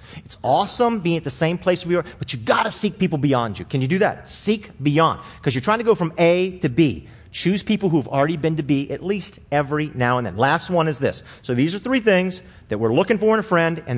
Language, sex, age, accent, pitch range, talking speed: English, male, 40-59, American, 125-175 Hz, 270 wpm